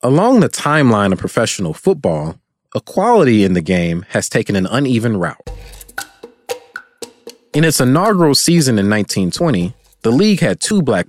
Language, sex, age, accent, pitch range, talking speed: English, male, 30-49, American, 100-155 Hz, 140 wpm